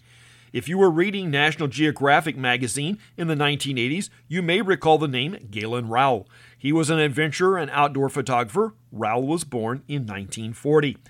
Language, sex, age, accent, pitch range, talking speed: English, male, 40-59, American, 125-170 Hz, 155 wpm